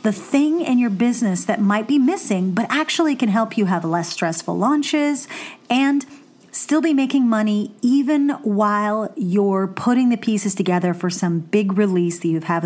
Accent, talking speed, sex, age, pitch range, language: American, 175 wpm, female, 30-49, 190-240 Hz, English